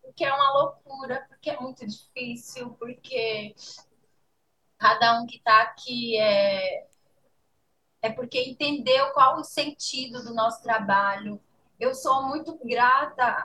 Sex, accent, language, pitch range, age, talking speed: female, Brazilian, English, 225-270 Hz, 20-39, 125 wpm